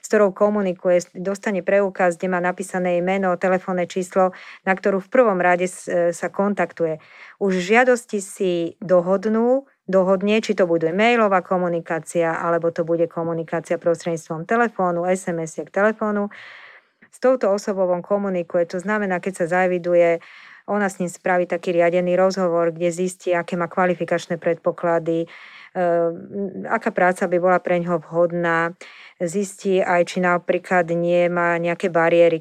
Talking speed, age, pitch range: 135 wpm, 40-59, 175-195 Hz